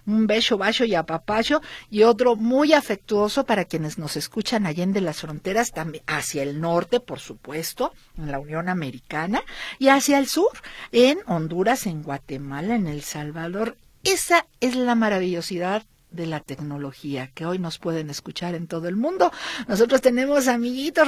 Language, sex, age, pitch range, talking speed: Spanish, female, 50-69, 185-270 Hz, 165 wpm